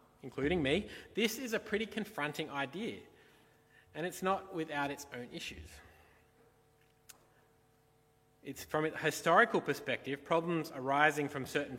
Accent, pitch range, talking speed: Australian, 125-155 Hz, 120 wpm